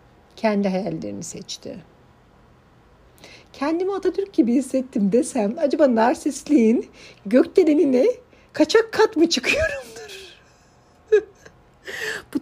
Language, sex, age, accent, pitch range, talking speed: Turkish, female, 60-79, native, 195-260 Hz, 75 wpm